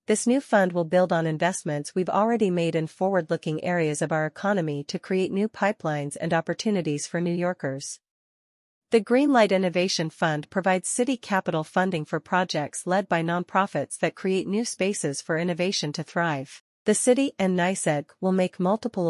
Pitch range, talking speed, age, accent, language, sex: 160-195 Hz, 170 wpm, 40-59, American, English, female